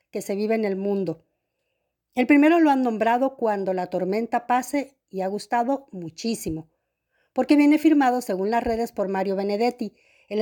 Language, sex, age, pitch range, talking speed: Spanish, female, 50-69, 195-245 Hz, 165 wpm